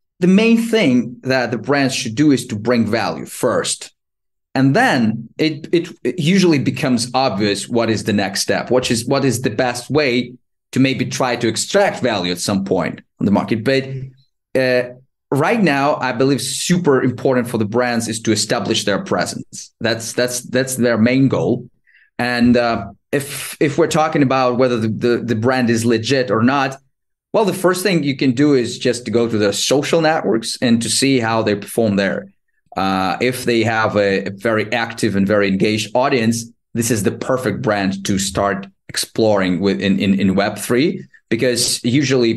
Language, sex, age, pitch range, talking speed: English, male, 30-49, 105-135 Hz, 185 wpm